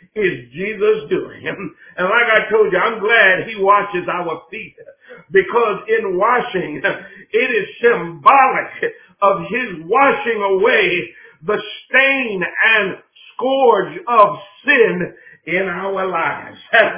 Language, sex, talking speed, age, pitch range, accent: English, male, 120 wpm, 50-69, 220-305 Hz, American